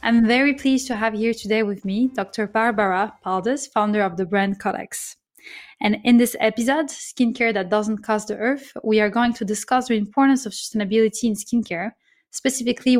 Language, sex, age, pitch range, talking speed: English, female, 20-39, 210-245 Hz, 180 wpm